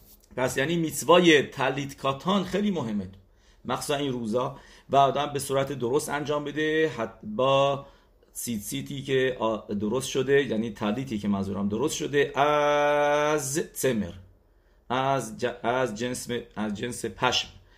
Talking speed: 135 wpm